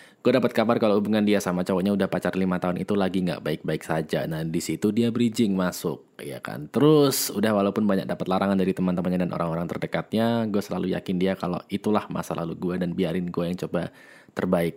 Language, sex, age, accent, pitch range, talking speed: Indonesian, male, 20-39, native, 90-115 Hz, 205 wpm